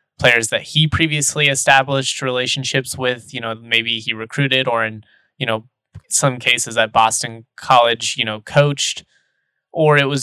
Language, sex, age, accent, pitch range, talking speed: English, male, 20-39, American, 115-135 Hz, 160 wpm